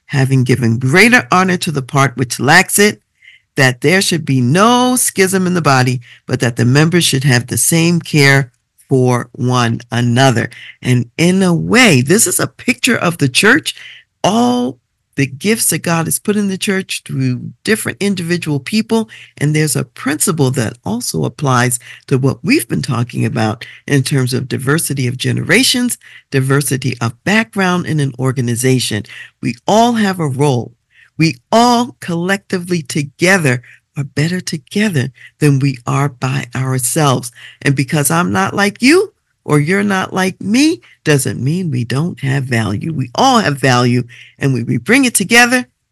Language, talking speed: English, 165 wpm